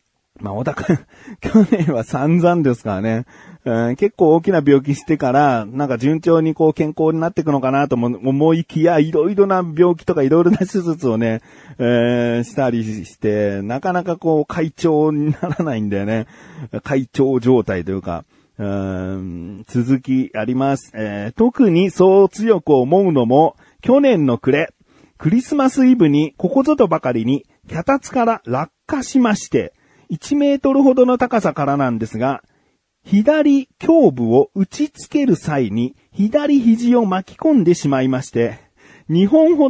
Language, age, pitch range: Japanese, 40-59, 120-190 Hz